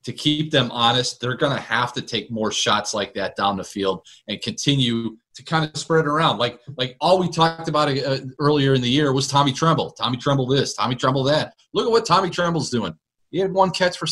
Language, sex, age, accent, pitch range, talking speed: English, male, 30-49, American, 115-165 Hz, 235 wpm